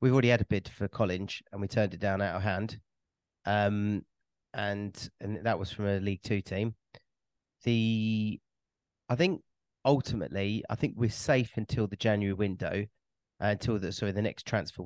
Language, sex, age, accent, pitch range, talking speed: English, male, 30-49, British, 100-115 Hz, 180 wpm